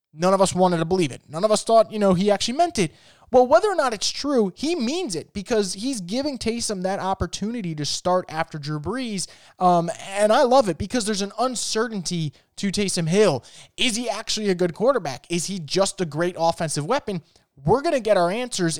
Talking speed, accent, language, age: 215 wpm, American, English, 20-39